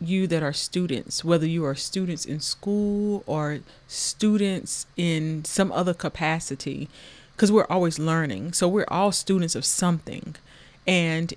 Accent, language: American, English